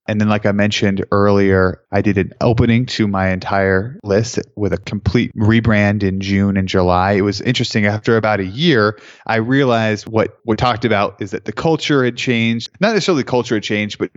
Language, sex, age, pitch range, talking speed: English, male, 20-39, 100-115 Hz, 205 wpm